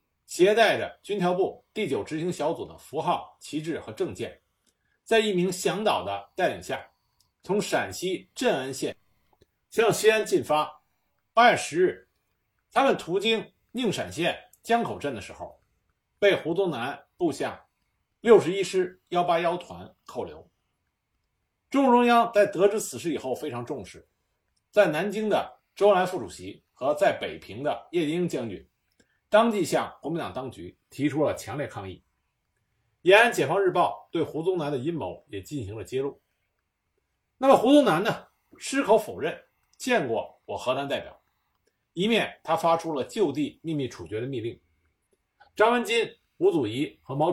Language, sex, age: Chinese, male, 50-69